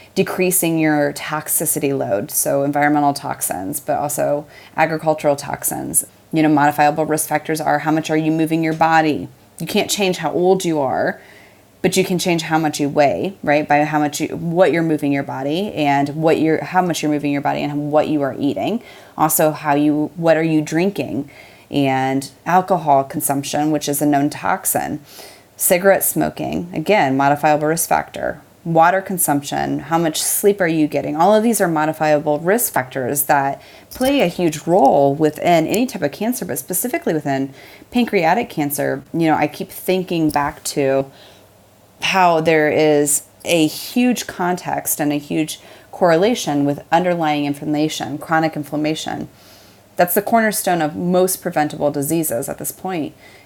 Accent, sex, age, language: American, female, 30-49, English